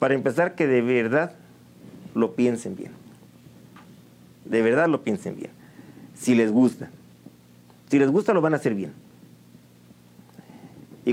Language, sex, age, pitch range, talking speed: Spanish, male, 40-59, 105-140 Hz, 135 wpm